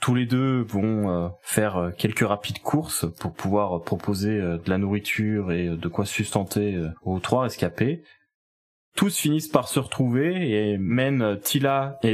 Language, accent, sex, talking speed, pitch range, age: French, French, male, 150 wpm, 100-125 Hz, 20-39